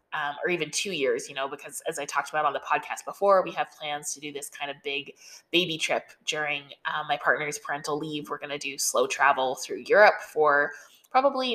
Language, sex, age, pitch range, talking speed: English, female, 20-39, 150-200 Hz, 225 wpm